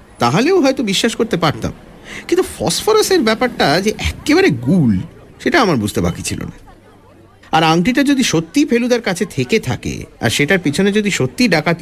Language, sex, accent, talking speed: Bengali, male, native, 155 wpm